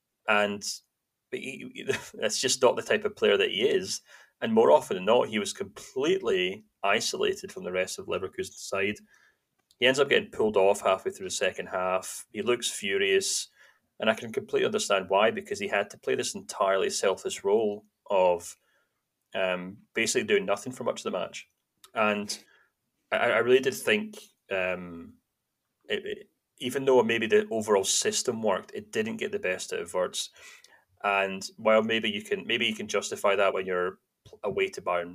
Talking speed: 180 wpm